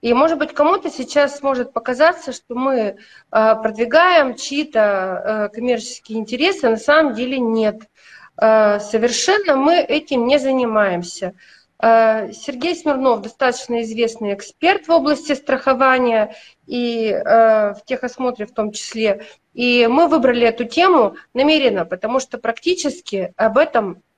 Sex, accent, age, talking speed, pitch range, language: female, native, 30-49, 115 wpm, 220-280 Hz, Russian